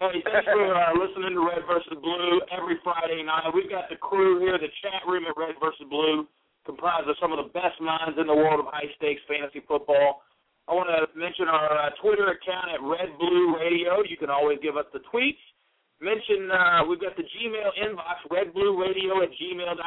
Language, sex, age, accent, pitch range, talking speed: English, male, 40-59, American, 160-205 Hz, 195 wpm